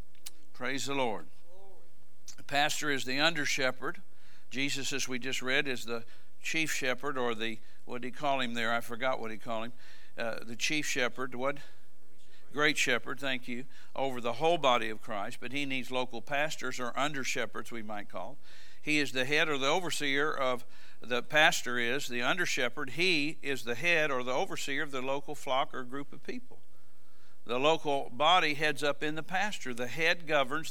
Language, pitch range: English, 120-145 Hz